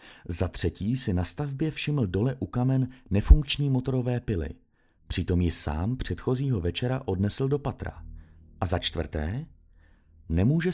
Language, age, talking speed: Czech, 30-49, 135 wpm